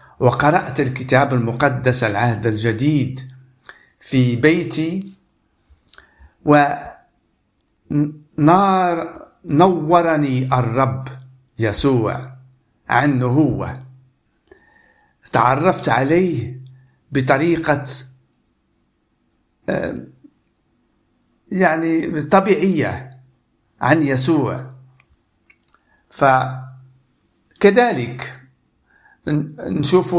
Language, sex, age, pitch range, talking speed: Arabic, male, 50-69, 125-155 Hz, 45 wpm